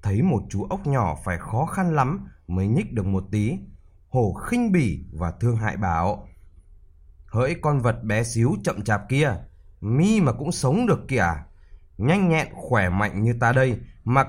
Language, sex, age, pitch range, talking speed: Vietnamese, male, 20-39, 90-145 Hz, 180 wpm